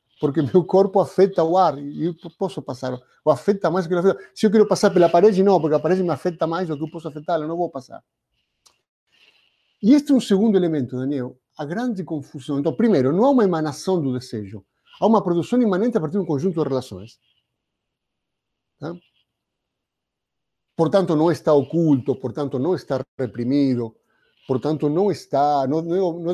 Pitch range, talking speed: 140-190 Hz, 185 wpm